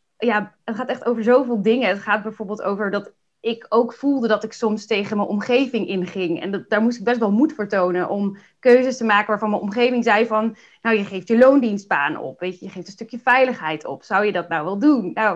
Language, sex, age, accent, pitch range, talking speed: Dutch, female, 20-39, Dutch, 200-235 Hz, 235 wpm